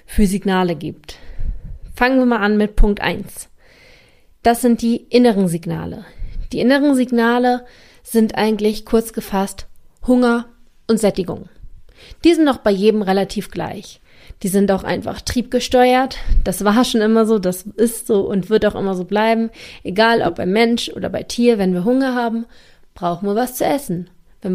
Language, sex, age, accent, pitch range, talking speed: German, female, 30-49, German, 200-240 Hz, 165 wpm